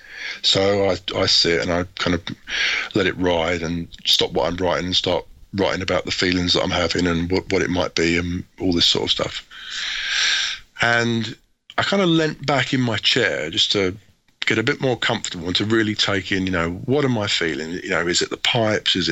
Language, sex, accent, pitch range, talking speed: English, male, British, 90-110 Hz, 225 wpm